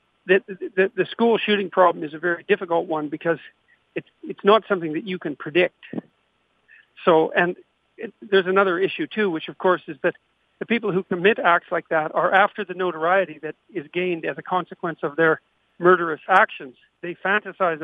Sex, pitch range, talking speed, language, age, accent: male, 160-190 Hz, 185 wpm, English, 50-69, American